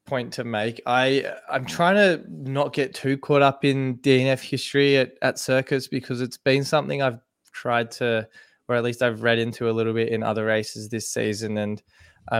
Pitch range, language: 115-135 Hz, English